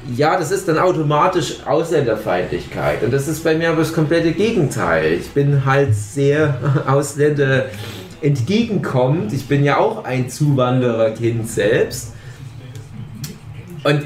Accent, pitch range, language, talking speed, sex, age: German, 120-155 Hz, German, 125 wpm, male, 30-49